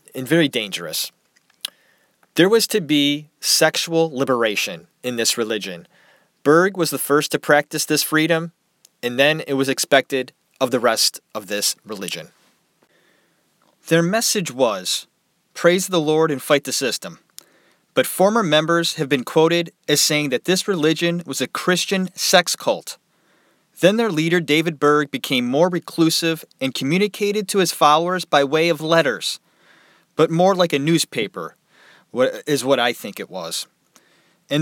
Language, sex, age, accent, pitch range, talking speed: English, male, 30-49, American, 140-175 Hz, 150 wpm